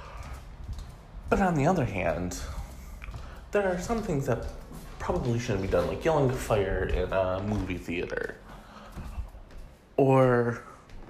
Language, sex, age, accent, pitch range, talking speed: English, male, 30-49, American, 80-130 Hz, 125 wpm